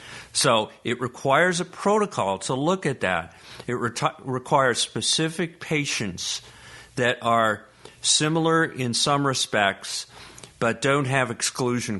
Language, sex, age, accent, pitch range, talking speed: English, male, 50-69, American, 95-130 Hz, 115 wpm